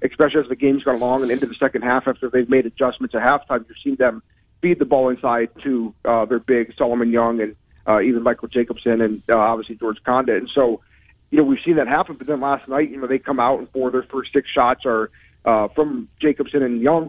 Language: English